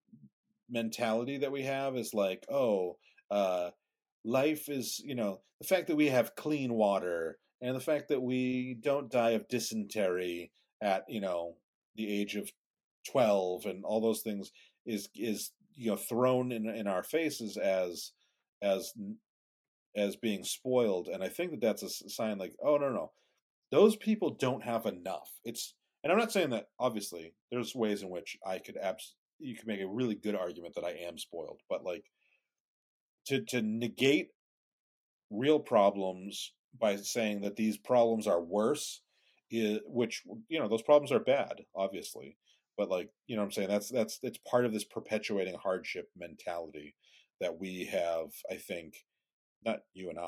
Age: 40-59